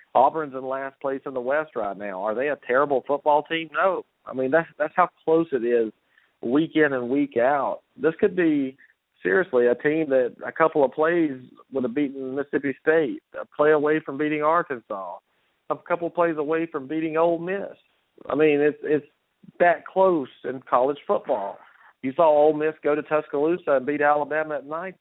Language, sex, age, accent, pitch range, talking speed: English, male, 40-59, American, 130-155 Hz, 195 wpm